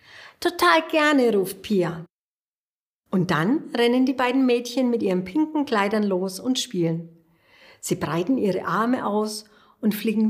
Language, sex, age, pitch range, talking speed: German, female, 60-79, 175-240 Hz, 140 wpm